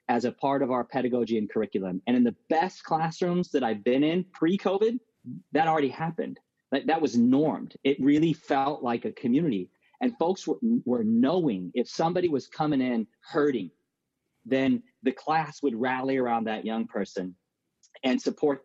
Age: 30-49